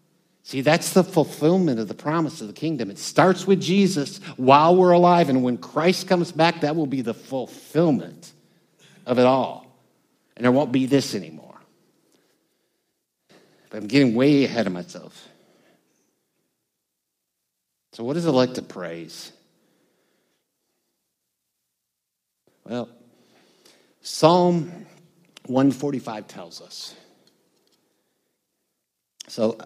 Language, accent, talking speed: English, American, 115 wpm